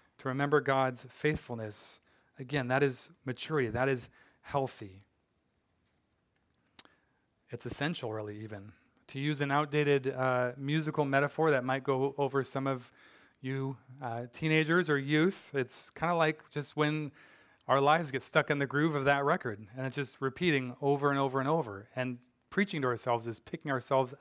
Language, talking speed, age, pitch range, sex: English, 160 wpm, 30-49, 125-150 Hz, male